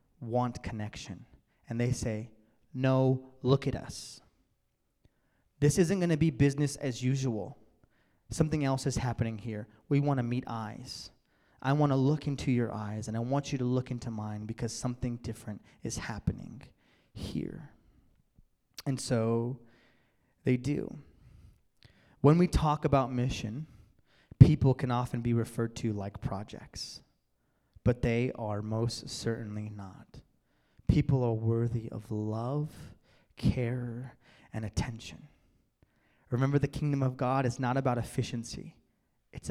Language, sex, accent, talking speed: English, male, American, 130 wpm